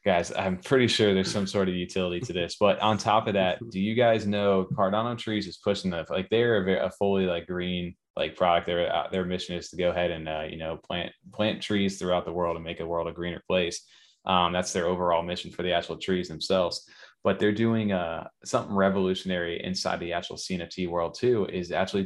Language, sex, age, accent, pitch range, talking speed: English, male, 20-39, American, 85-95 Hz, 230 wpm